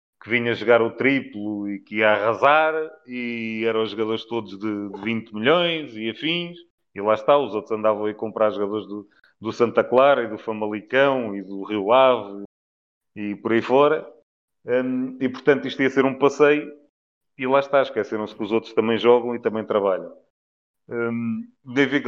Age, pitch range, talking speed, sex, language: 30-49, 110-130 Hz, 170 wpm, male, Portuguese